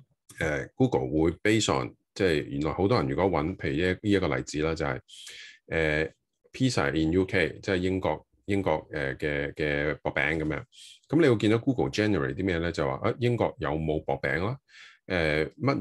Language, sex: Chinese, male